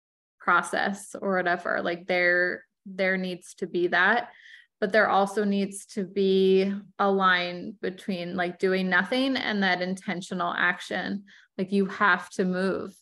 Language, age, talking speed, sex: English, 20-39, 145 wpm, female